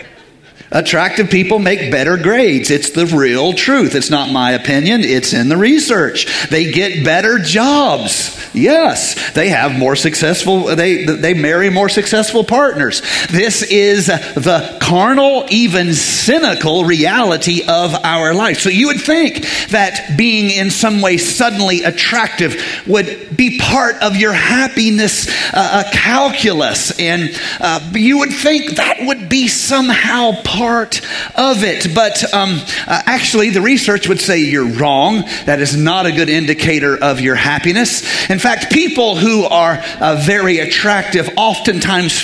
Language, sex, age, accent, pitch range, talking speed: English, male, 40-59, American, 165-225 Hz, 145 wpm